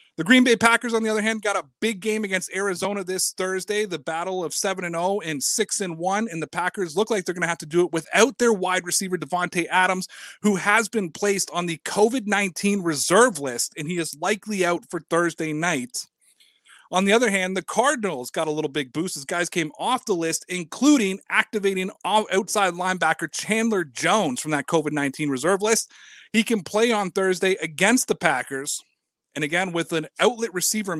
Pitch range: 170-210 Hz